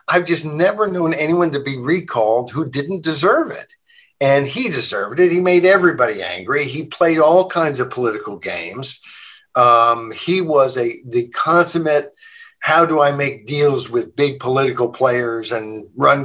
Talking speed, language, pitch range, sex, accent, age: 165 wpm, English, 125-180 Hz, male, American, 50-69